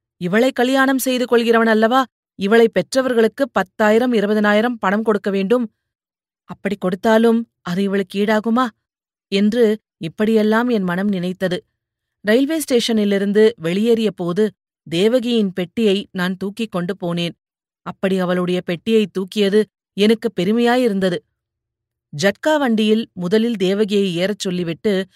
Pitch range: 180-220 Hz